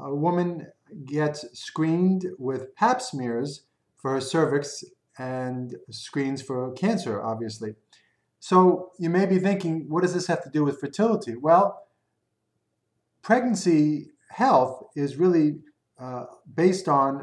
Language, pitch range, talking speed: English, 130-170 Hz, 125 wpm